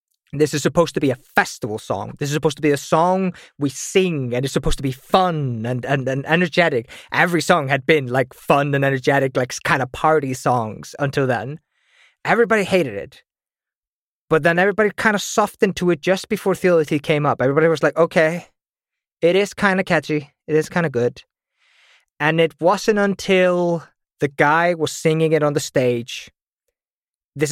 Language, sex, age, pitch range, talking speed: English, male, 20-39, 140-170 Hz, 185 wpm